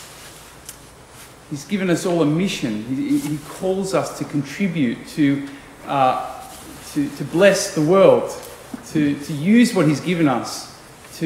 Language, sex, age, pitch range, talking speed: English, male, 40-59, 140-165 Hz, 140 wpm